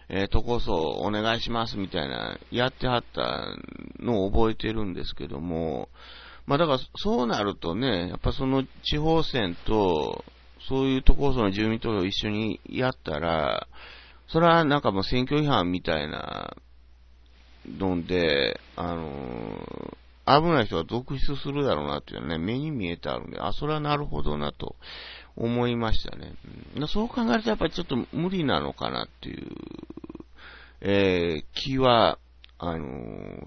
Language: Japanese